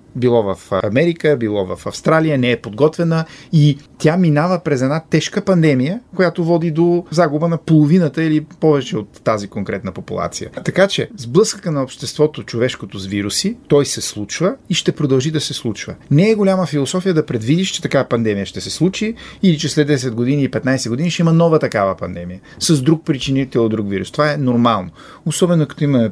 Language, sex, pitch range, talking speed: Bulgarian, male, 120-165 Hz, 185 wpm